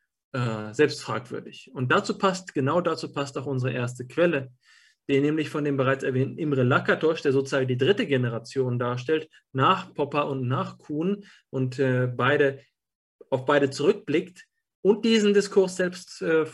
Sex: male